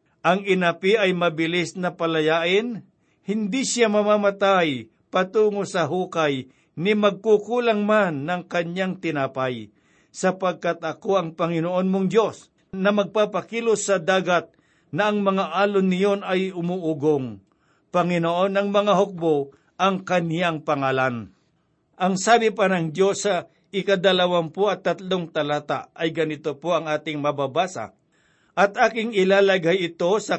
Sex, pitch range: male, 165-195 Hz